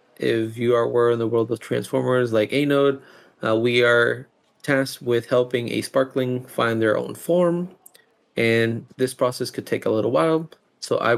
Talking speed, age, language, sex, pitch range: 175 wpm, 30-49, English, male, 110-135 Hz